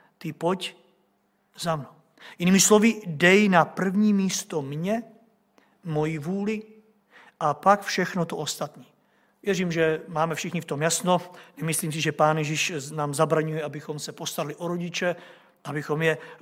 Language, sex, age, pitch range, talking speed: Czech, male, 50-69, 155-185 Hz, 145 wpm